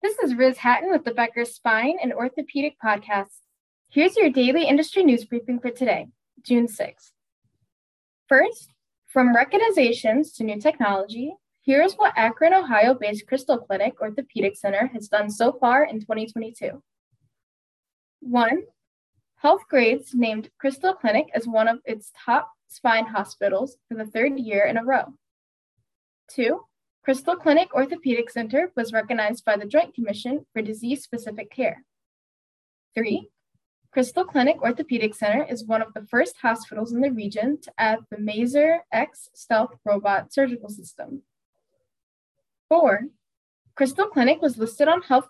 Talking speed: 140 wpm